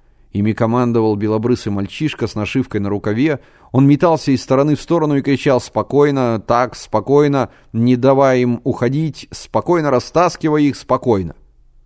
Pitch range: 100-130 Hz